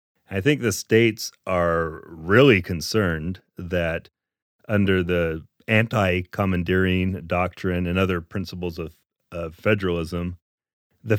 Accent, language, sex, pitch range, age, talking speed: American, English, male, 90-110 Hz, 30-49, 105 wpm